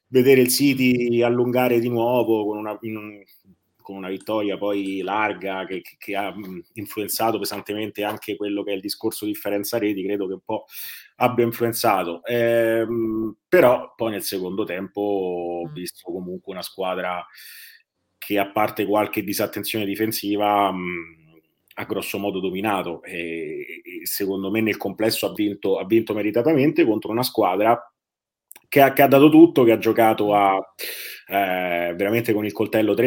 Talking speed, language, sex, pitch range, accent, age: 150 wpm, Italian, male, 95-115 Hz, native, 30-49